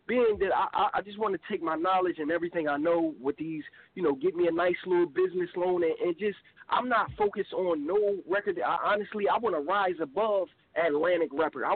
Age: 20-39